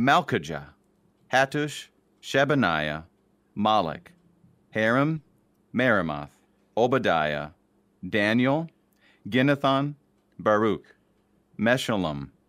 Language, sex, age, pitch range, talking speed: English, male, 40-59, 95-135 Hz, 55 wpm